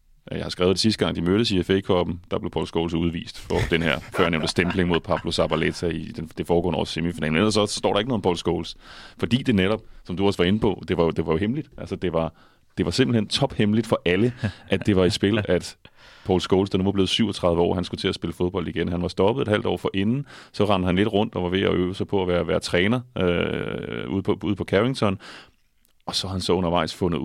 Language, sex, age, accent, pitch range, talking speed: Danish, male, 30-49, native, 85-100 Hz, 260 wpm